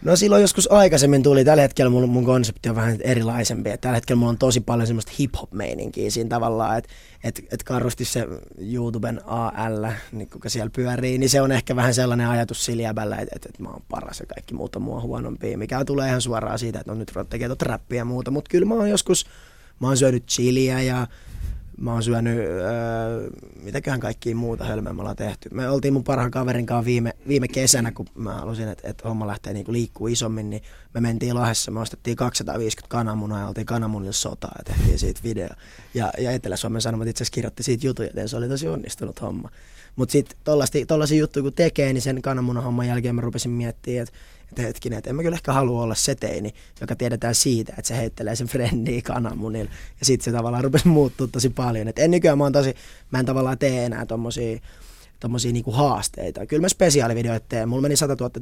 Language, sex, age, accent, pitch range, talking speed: Finnish, male, 20-39, native, 110-130 Hz, 205 wpm